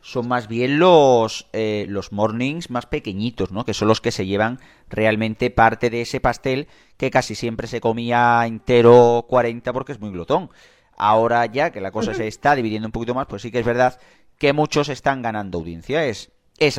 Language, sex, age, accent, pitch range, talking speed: Spanish, male, 30-49, Spanish, 105-130 Hz, 195 wpm